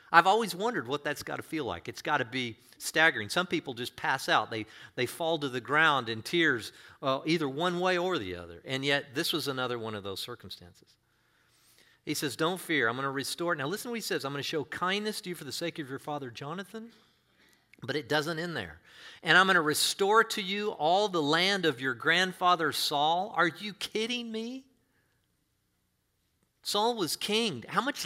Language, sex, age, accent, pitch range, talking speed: English, male, 40-59, American, 145-195 Hz, 210 wpm